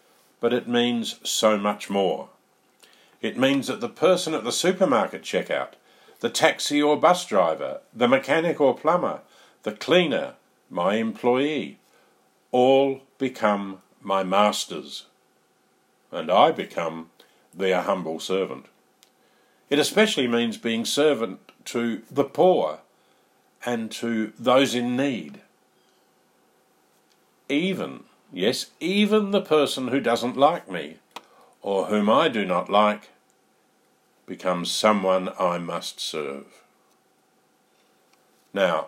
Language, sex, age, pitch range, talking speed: English, male, 50-69, 100-135 Hz, 110 wpm